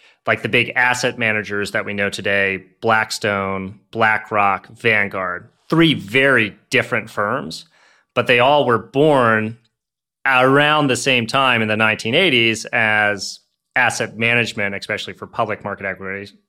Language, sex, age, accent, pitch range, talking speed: English, male, 30-49, American, 95-115 Hz, 130 wpm